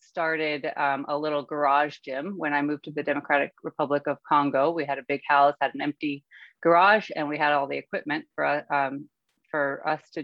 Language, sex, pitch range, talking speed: English, female, 140-155 Hz, 205 wpm